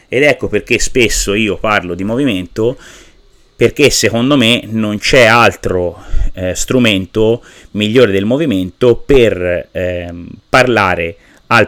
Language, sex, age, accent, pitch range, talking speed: Italian, male, 30-49, native, 95-120 Hz, 120 wpm